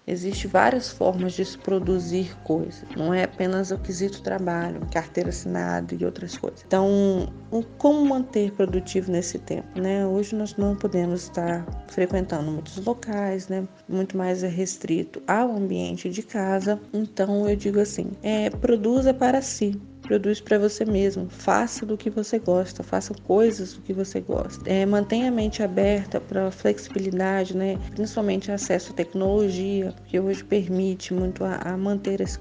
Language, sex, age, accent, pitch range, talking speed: Portuguese, female, 20-39, Brazilian, 180-205 Hz, 155 wpm